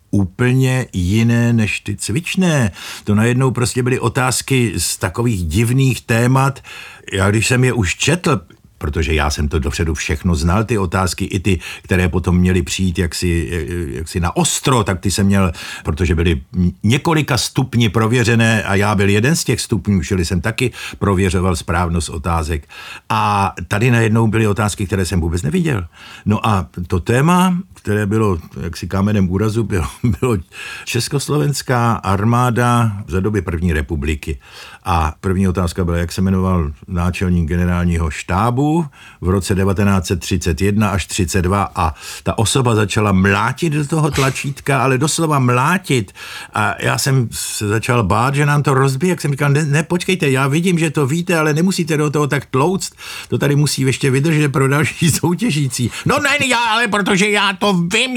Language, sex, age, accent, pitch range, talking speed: Czech, male, 50-69, native, 95-135 Hz, 160 wpm